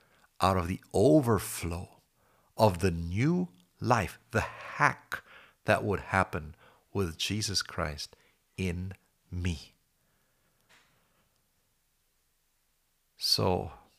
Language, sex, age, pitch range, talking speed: English, male, 60-79, 90-115 Hz, 80 wpm